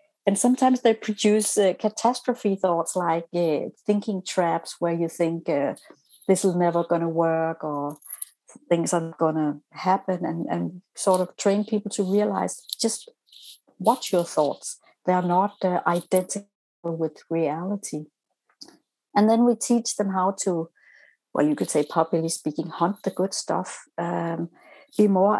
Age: 60-79